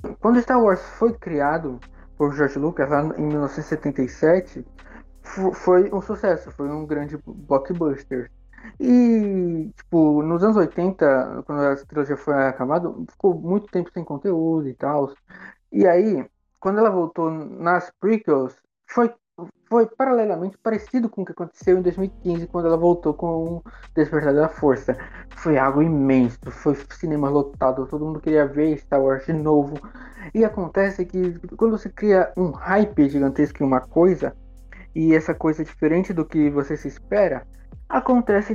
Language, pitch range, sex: Portuguese, 145-185 Hz, male